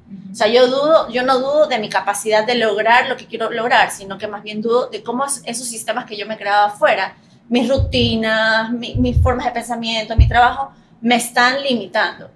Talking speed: 205 wpm